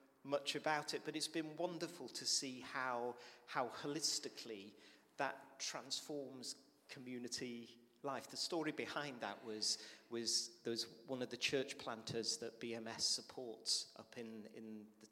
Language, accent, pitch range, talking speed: English, British, 110-130 Hz, 145 wpm